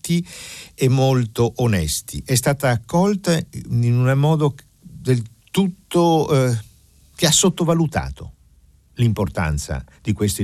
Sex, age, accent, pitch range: male, 60-79, native, 75-125 Hz